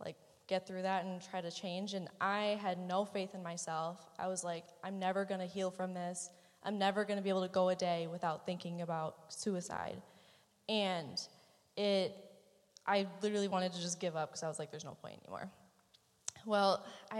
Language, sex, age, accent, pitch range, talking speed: English, female, 20-39, American, 175-205 Hz, 200 wpm